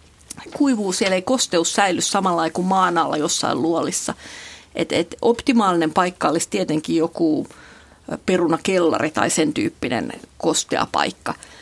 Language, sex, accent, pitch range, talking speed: Finnish, female, native, 180-230 Hz, 115 wpm